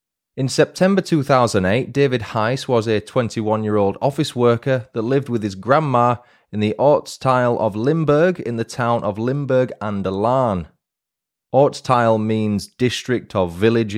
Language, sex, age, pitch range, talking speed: English, male, 20-39, 100-125 Hz, 135 wpm